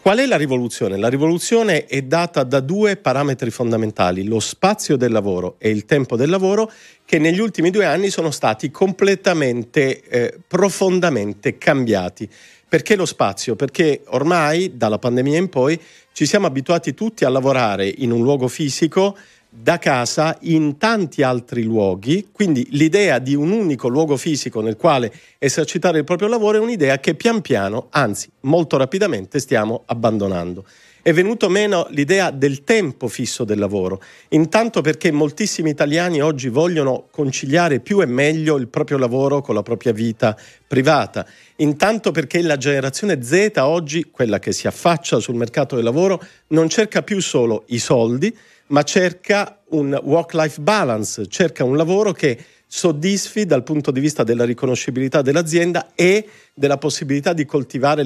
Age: 50-69